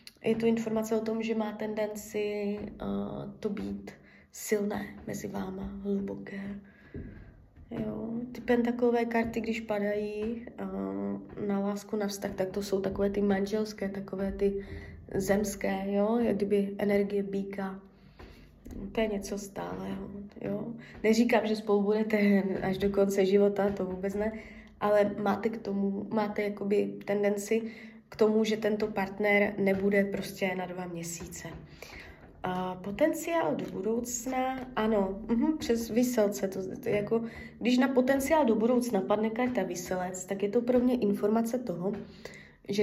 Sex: female